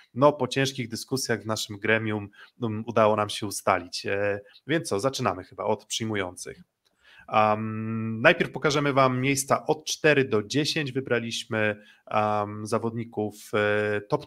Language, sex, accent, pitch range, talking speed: Polish, male, native, 105-130 Hz, 125 wpm